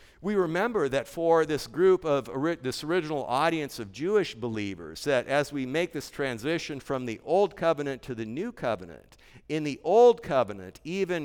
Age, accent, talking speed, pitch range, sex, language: 50-69, American, 170 wpm, 130-170 Hz, male, English